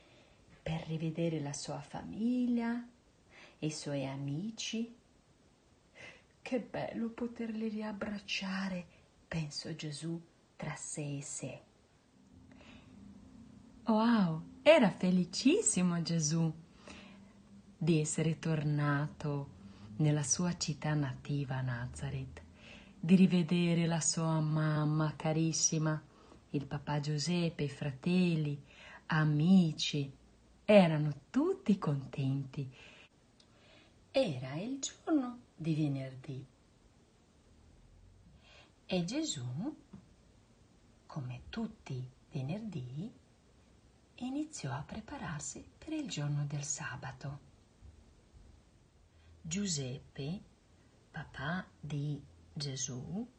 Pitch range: 140-195 Hz